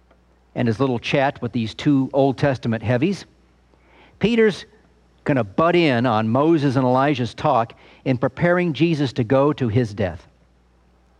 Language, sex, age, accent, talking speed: English, male, 50-69, American, 150 wpm